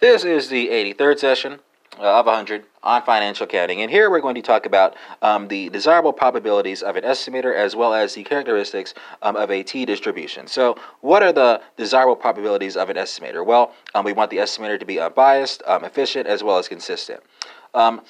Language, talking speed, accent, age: English, 190 wpm, American, 30-49